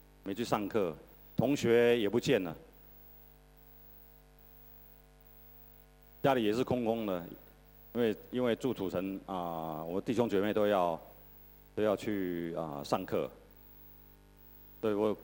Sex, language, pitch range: male, Chinese, 100-105 Hz